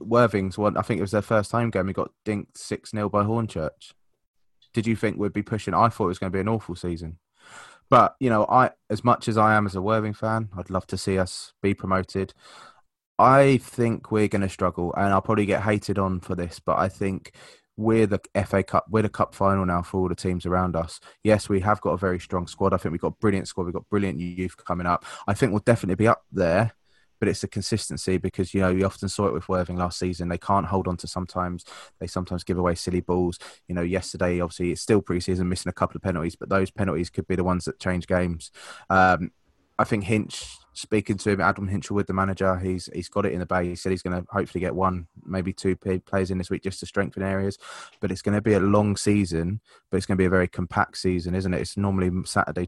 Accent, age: British, 20-39